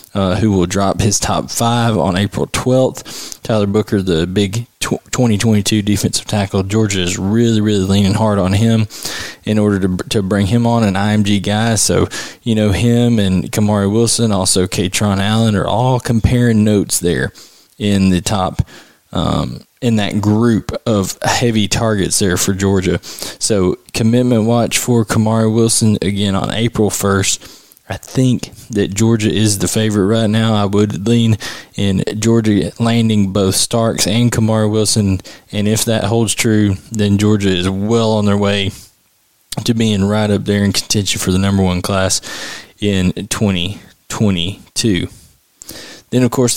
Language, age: English, 20-39